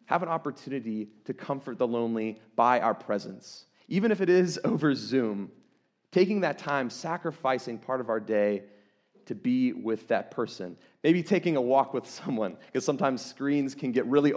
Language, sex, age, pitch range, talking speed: English, male, 30-49, 110-145 Hz, 170 wpm